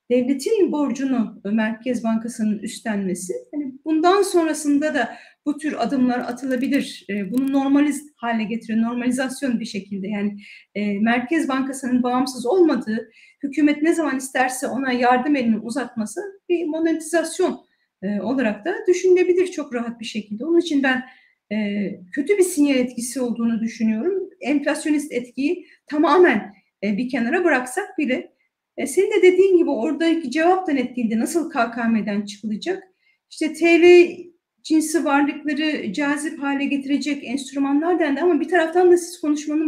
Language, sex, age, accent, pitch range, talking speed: Turkish, female, 40-59, native, 240-330 Hz, 125 wpm